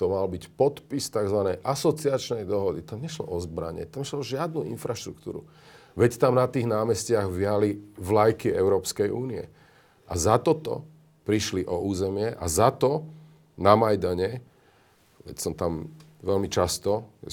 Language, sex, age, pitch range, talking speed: Slovak, male, 40-59, 95-125 Hz, 145 wpm